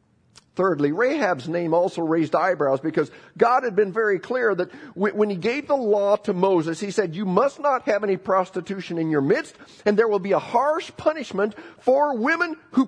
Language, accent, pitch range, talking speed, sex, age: English, American, 165-260 Hz, 190 wpm, male, 50-69